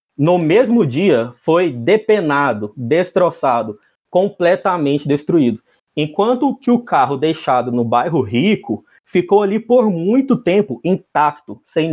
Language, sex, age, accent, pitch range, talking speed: Portuguese, male, 20-39, Brazilian, 140-185 Hz, 115 wpm